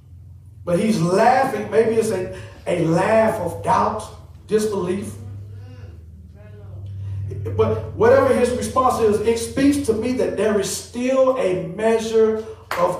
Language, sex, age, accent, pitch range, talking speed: English, male, 40-59, American, 145-235 Hz, 125 wpm